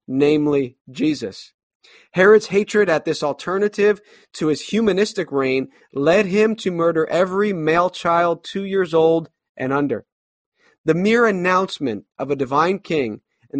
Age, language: 30-49, English